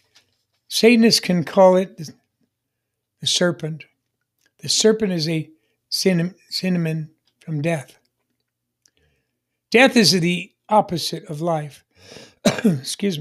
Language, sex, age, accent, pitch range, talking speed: English, male, 60-79, American, 155-200 Hz, 90 wpm